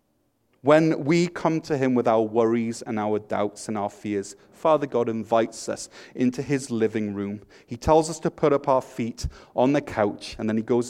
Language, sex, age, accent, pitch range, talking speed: English, male, 30-49, British, 115-155 Hz, 205 wpm